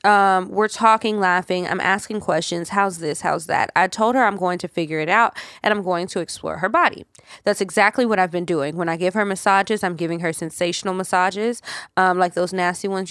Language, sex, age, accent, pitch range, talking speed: English, female, 20-39, American, 175-215 Hz, 220 wpm